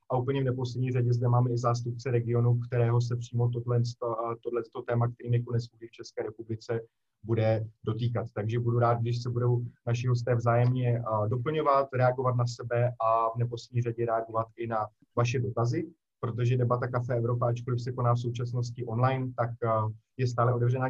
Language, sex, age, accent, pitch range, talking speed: Czech, male, 30-49, native, 115-125 Hz, 170 wpm